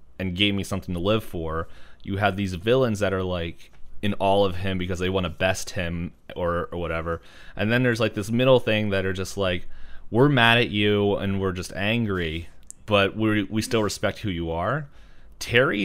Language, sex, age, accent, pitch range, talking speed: English, male, 30-49, American, 85-110 Hz, 205 wpm